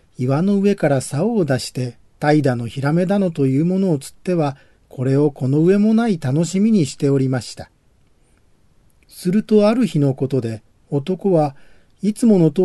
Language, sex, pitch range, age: Japanese, male, 130-185 Hz, 40-59